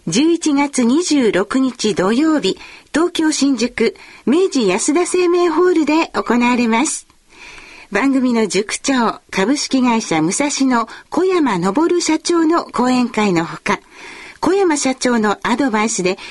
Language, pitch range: Chinese, 230-330 Hz